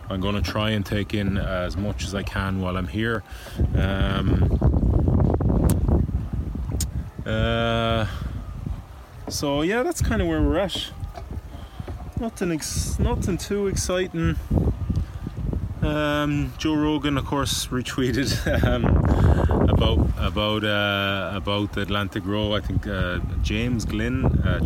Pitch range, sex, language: 90-110 Hz, male, English